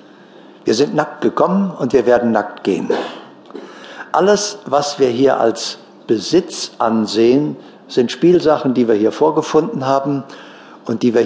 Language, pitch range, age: German, 115-175 Hz, 60-79